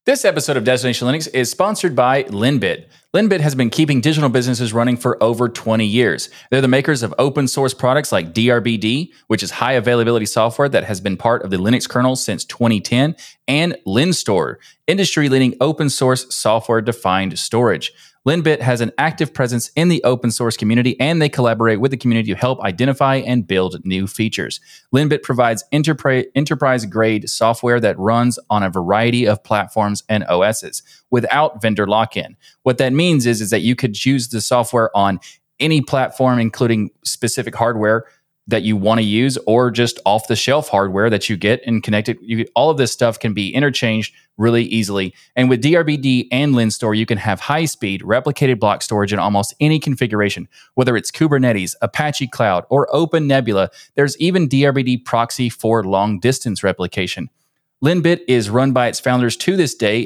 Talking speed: 175 wpm